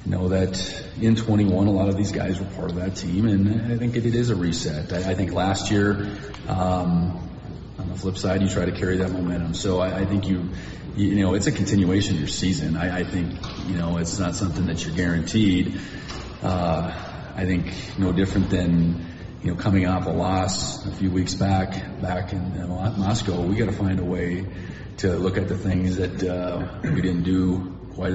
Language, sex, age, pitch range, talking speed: English, male, 30-49, 90-100 Hz, 215 wpm